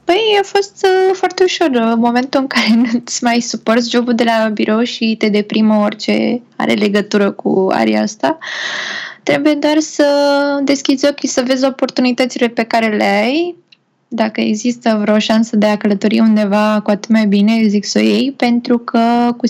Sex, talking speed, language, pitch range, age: female, 175 wpm, Romanian, 215-280 Hz, 20-39